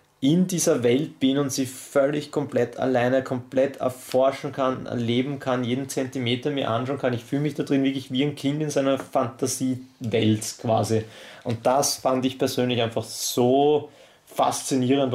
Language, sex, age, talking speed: German, male, 30-49, 160 wpm